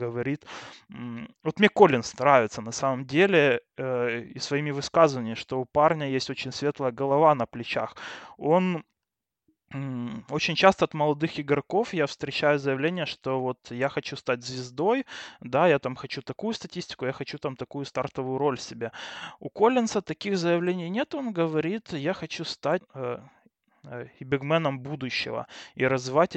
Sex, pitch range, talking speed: male, 135-175 Hz, 150 wpm